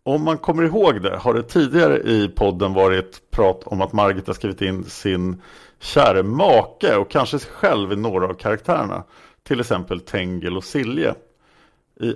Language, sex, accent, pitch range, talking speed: Swedish, male, Norwegian, 105-145 Hz, 170 wpm